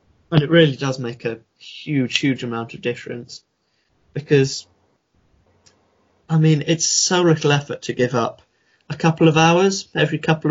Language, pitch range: English, 120-145 Hz